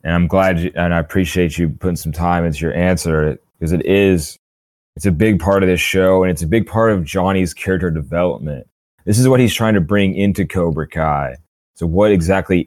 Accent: American